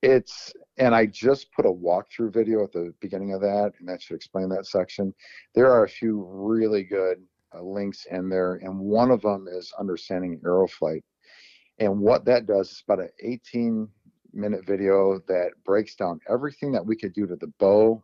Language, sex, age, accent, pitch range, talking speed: English, male, 50-69, American, 90-110 Hz, 195 wpm